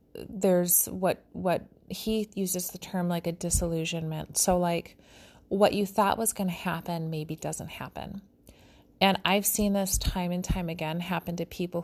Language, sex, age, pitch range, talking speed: English, female, 30-49, 170-195 Hz, 165 wpm